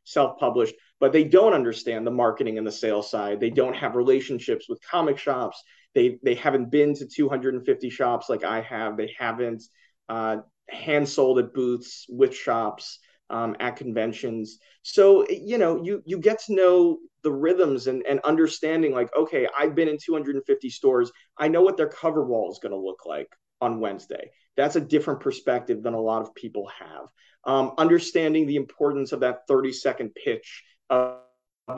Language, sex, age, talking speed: English, male, 30-49, 175 wpm